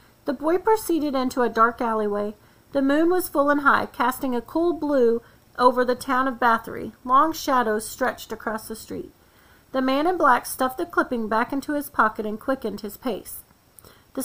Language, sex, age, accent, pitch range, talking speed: English, female, 40-59, American, 235-295 Hz, 185 wpm